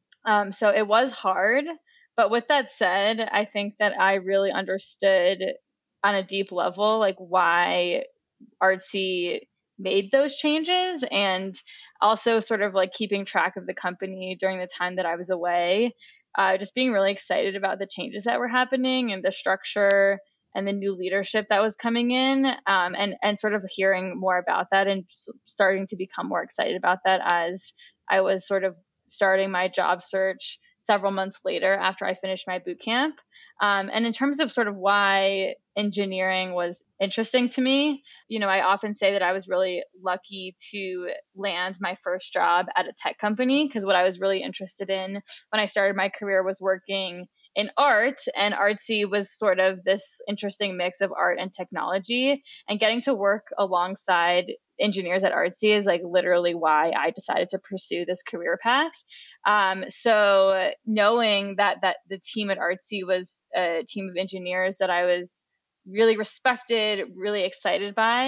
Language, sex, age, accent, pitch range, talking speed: English, female, 10-29, American, 185-225 Hz, 175 wpm